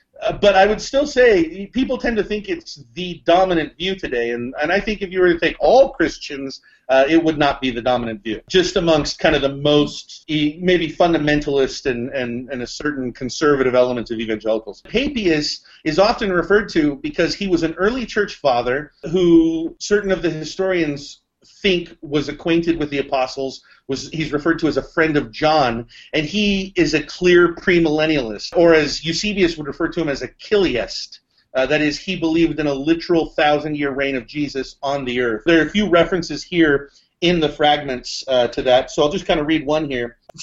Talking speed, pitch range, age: 200 wpm, 140-185 Hz, 40-59